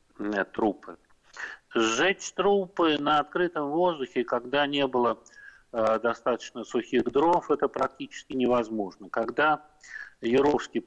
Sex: male